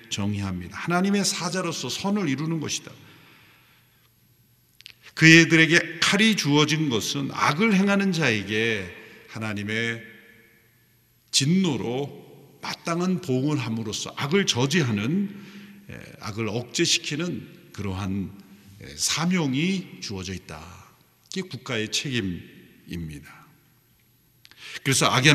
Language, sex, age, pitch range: Korean, male, 50-69, 115-165 Hz